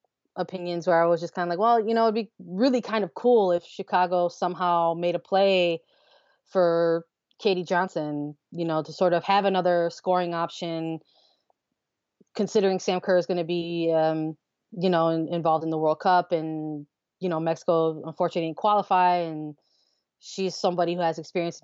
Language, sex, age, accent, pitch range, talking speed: English, female, 20-39, American, 165-190 Hz, 170 wpm